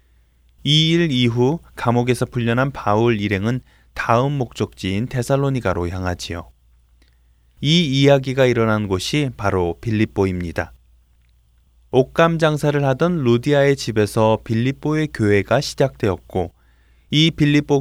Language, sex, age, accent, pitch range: Korean, male, 20-39, native, 95-145 Hz